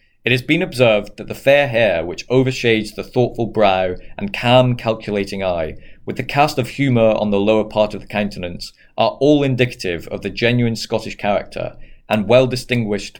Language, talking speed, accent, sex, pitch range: English, 175 wpm, British, male, 100-130 Hz